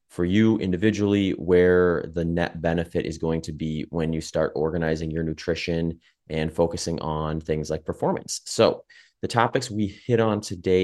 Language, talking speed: English, 165 wpm